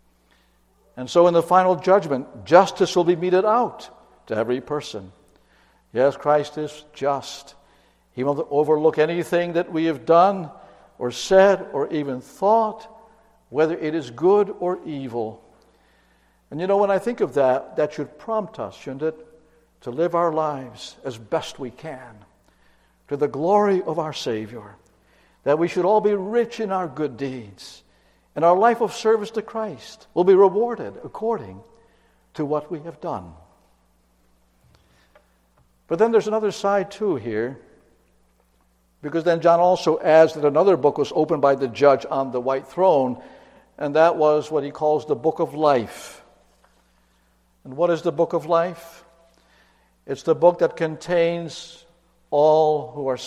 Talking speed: 160 wpm